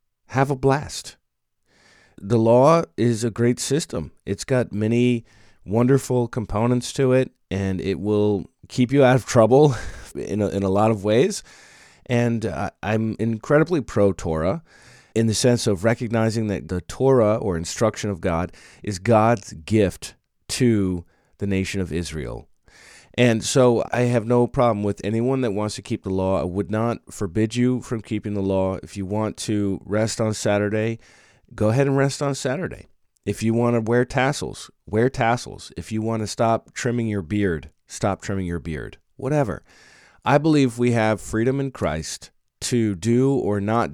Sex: male